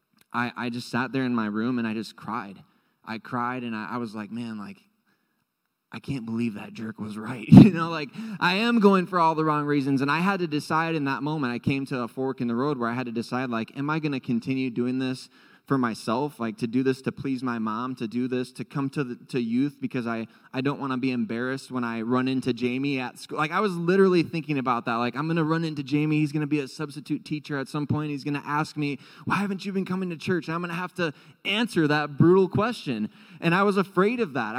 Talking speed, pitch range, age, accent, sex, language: 265 wpm, 120-160 Hz, 20-39, American, male, English